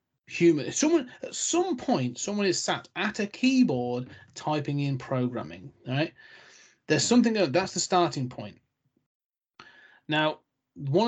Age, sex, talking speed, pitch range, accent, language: 30-49, male, 125 wpm, 130-180 Hz, British, English